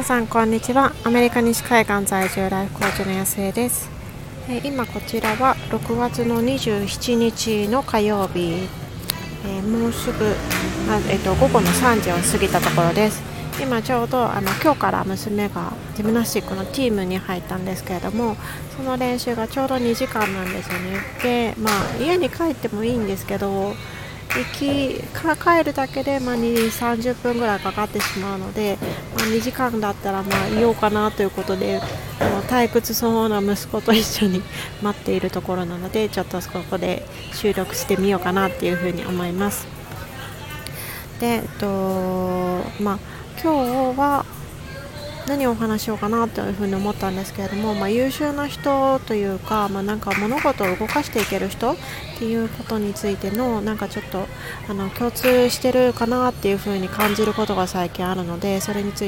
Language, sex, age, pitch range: Japanese, female, 40-59, 190-235 Hz